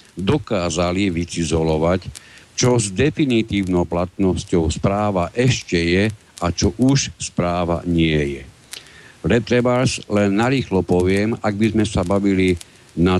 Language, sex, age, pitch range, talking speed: Slovak, male, 60-79, 85-110 Hz, 115 wpm